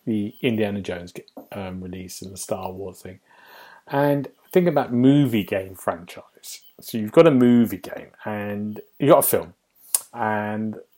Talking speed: 155 wpm